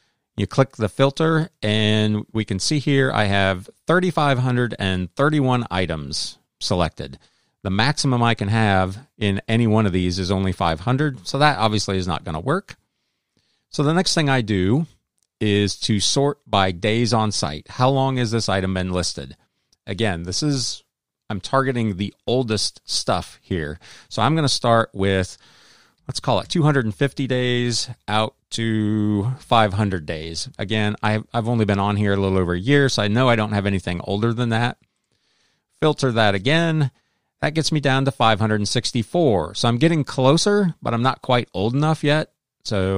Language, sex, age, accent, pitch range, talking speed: English, male, 40-59, American, 100-130 Hz, 170 wpm